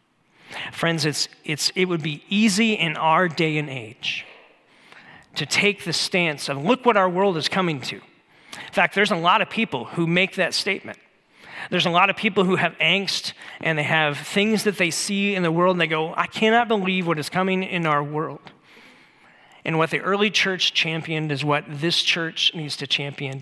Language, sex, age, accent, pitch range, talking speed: English, male, 40-59, American, 150-190 Hz, 200 wpm